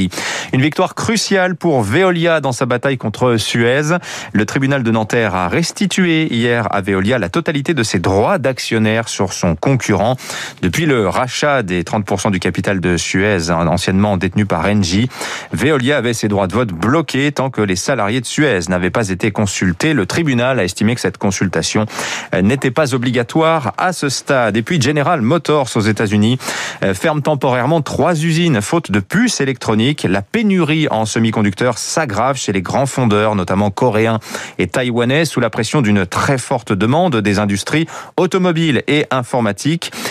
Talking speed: 165 wpm